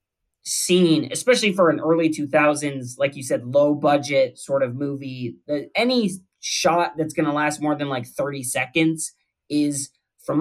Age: 20-39